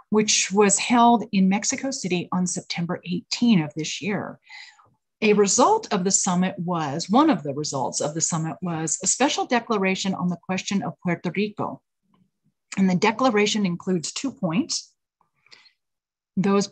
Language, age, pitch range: English, 40-59, 180-220 Hz